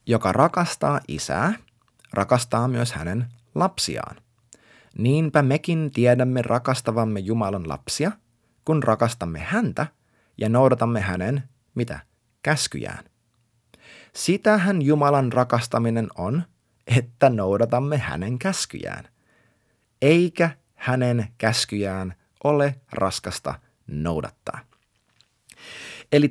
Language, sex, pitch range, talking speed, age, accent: Finnish, male, 115-145 Hz, 80 wpm, 30-49, native